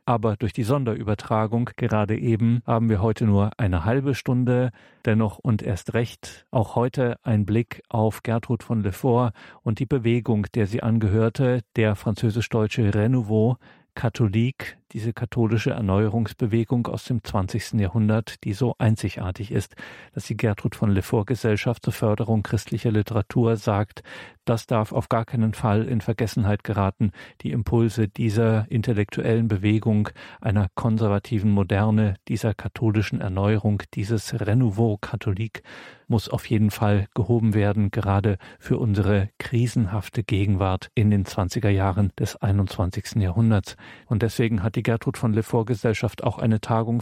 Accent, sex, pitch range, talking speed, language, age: German, male, 105-120 Hz, 140 wpm, German, 40-59